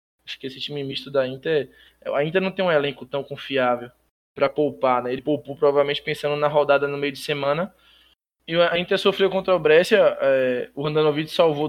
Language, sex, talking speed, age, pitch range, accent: Portuguese, male, 205 wpm, 20-39, 140-165 Hz, Brazilian